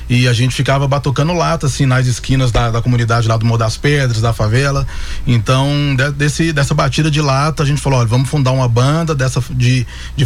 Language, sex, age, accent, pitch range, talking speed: Portuguese, male, 20-39, Brazilian, 110-135 Hz, 215 wpm